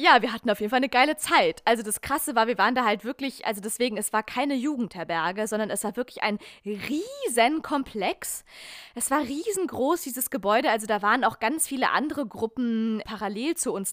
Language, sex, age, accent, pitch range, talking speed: German, female, 20-39, German, 205-260 Hz, 200 wpm